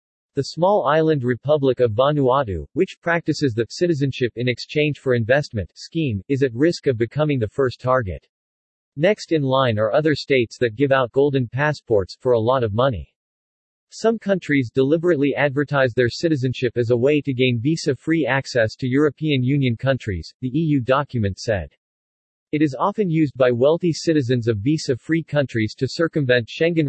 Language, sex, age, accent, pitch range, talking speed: English, male, 40-59, American, 120-155 Hz, 165 wpm